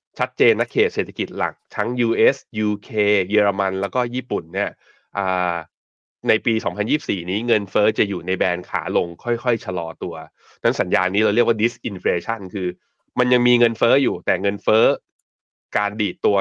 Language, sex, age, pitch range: Thai, male, 20-39, 95-115 Hz